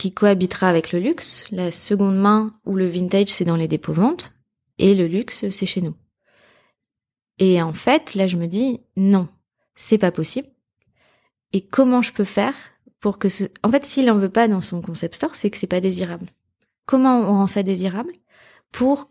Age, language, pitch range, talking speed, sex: 20-39, French, 175-210 Hz, 195 wpm, female